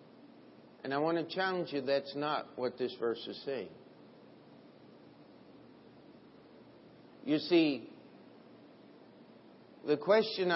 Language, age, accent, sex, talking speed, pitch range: English, 50-69, American, male, 95 wpm, 150-235 Hz